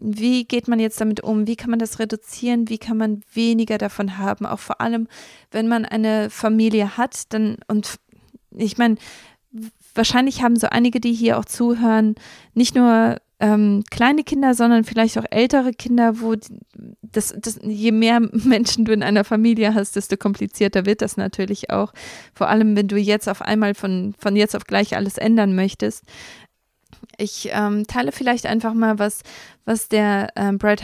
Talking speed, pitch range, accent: 175 wpm, 205-225 Hz, German